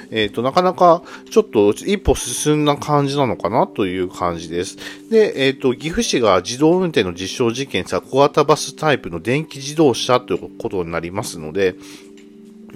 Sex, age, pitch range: male, 40-59, 95-155 Hz